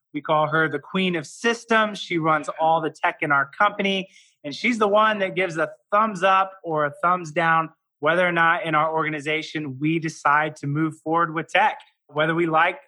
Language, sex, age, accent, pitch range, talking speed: English, male, 20-39, American, 150-185 Hz, 205 wpm